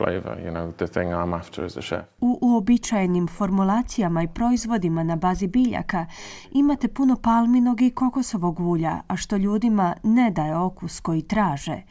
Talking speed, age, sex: 110 wpm, 30-49, female